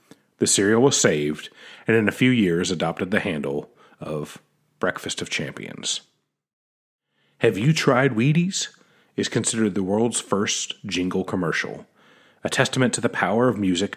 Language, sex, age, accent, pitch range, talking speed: English, male, 40-59, American, 90-115 Hz, 145 wpm